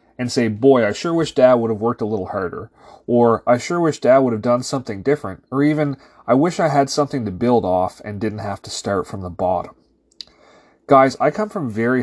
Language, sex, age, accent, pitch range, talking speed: English, male, 30-49, American, 115-145 Hz, 230 wpm